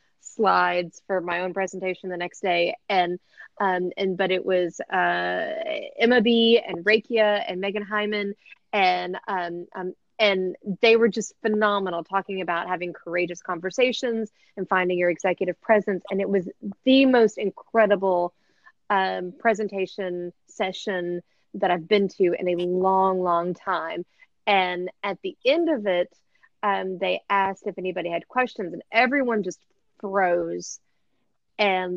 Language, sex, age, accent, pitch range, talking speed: English, female, 30-49, American, 180-225 Hz, 145 wpm